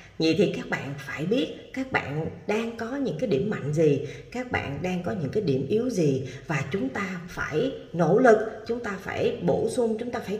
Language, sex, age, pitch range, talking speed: Vietnamese, female, 30-49, 135-210 Hz, 220 wpm